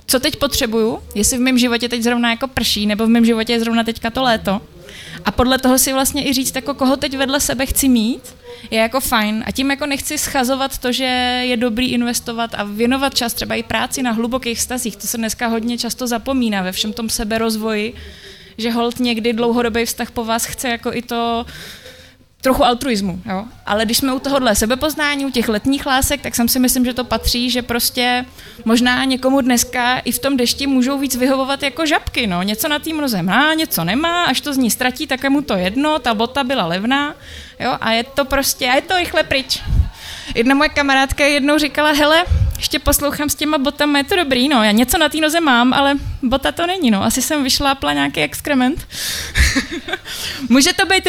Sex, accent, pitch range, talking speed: female, native, 235-280 Hz, 210 wpm